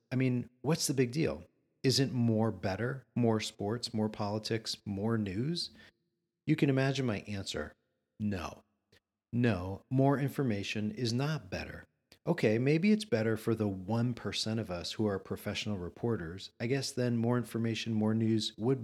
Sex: male